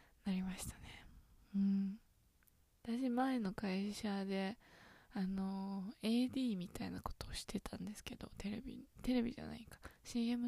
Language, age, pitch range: Japanese, 20-39, 195-220 Hz